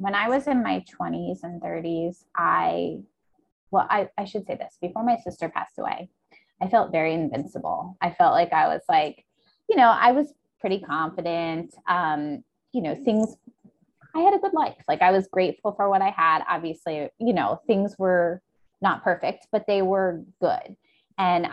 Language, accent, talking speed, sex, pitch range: English, American, 180 wpm, female, 170-235 Hz